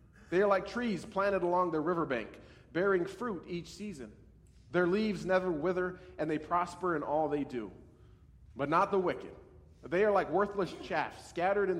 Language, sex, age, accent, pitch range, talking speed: English, male, 40-59, American, 170-215 Hz, 175 wpm